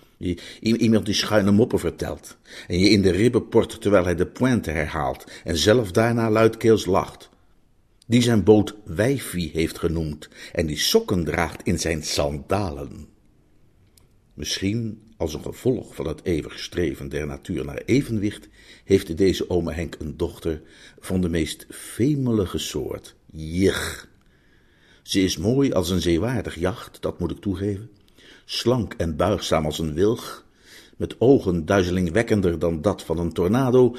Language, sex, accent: Dutch, male, Dutch